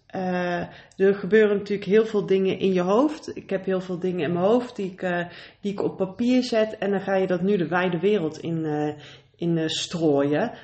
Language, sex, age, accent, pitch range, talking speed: Dutch, female, 30-49, Dutch, 175-205 Hz, 215 wpm